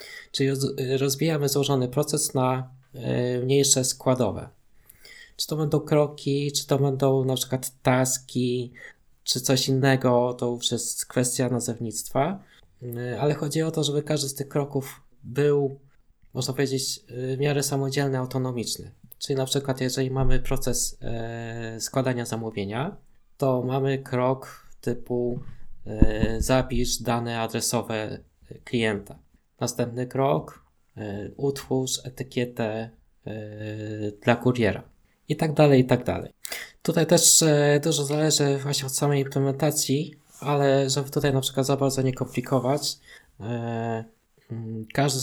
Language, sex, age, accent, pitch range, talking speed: Polish, male, 20-39, native, 120-140 Hz, 120 wpm